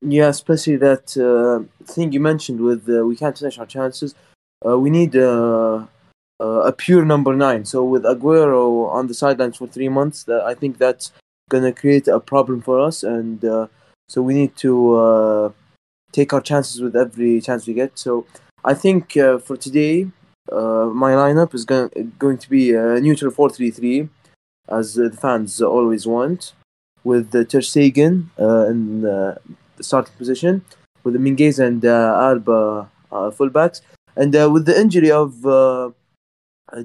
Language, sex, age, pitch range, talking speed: English, male, 20-39, 120-145 Hz, 175 wpm